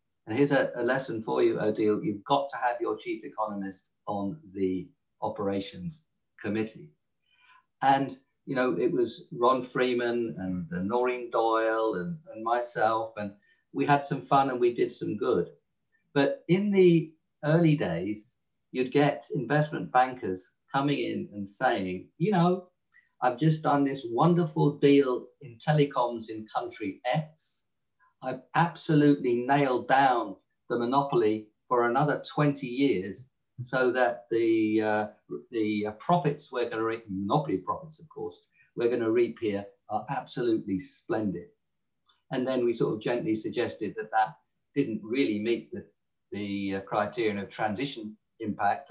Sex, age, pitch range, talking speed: male, 50-69, 110-150 Hz, 145 wpm